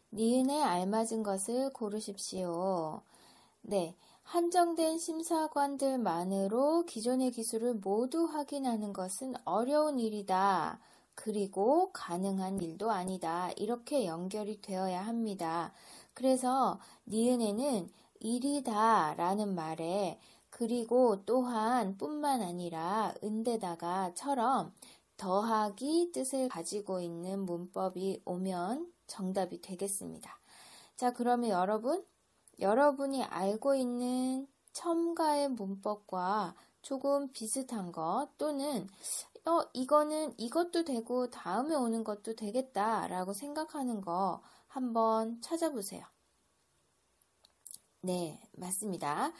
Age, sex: 20-39, female